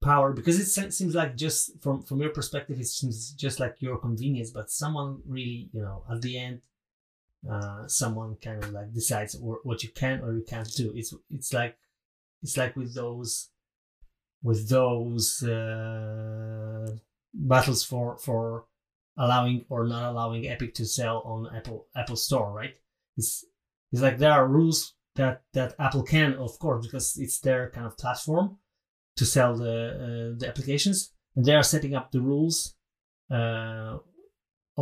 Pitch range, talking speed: 115-135 Hz, 165 wpm